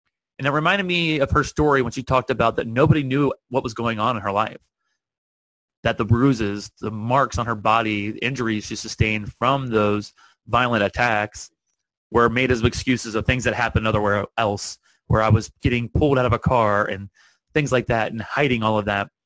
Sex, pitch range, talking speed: male, 105-130 Hz, 205 wpm